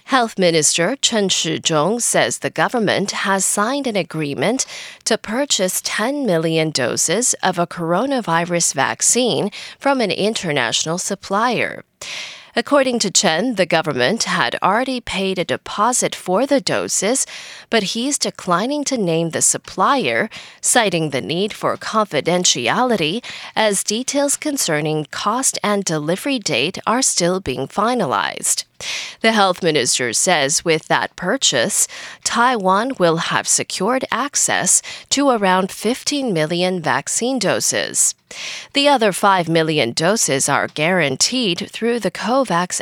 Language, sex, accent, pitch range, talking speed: English, female, American, 165-245 Hz, 125 wpm